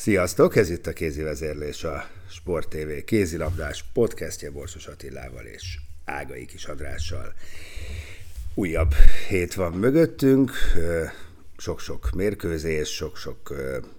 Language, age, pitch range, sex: Hungarian, 50-69, 80-95 Hz, male